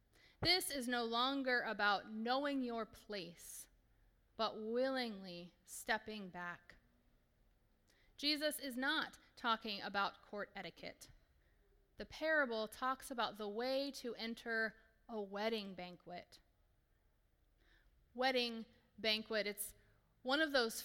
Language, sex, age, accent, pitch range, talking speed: English, female, 30-49, American, 205-260 Hz, 105 wpm